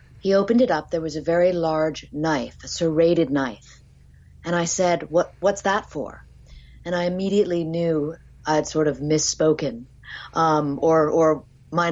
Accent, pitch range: American, 140-190 Hz